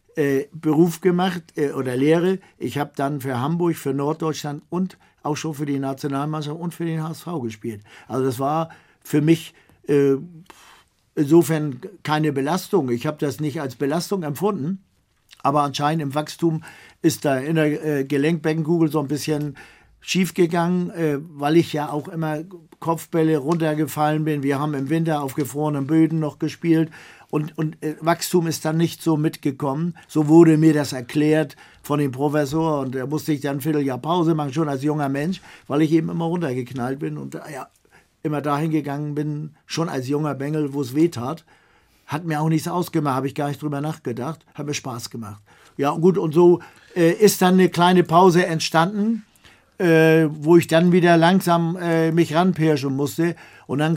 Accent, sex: German, male